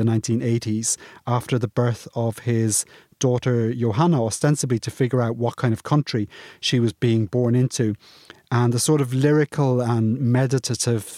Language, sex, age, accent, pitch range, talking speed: English, male, 30-49, British, 110-125 Hz, 155 wpm